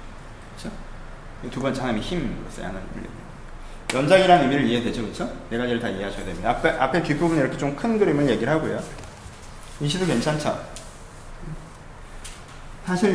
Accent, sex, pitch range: native, male, 110-155 Hz